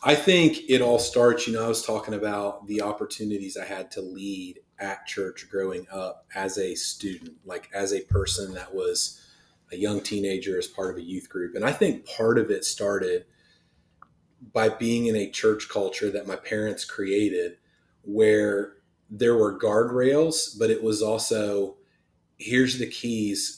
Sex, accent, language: male, American, English